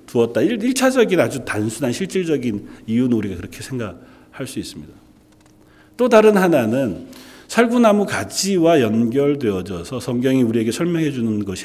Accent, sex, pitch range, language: native, male, 105-170 Hz, Korean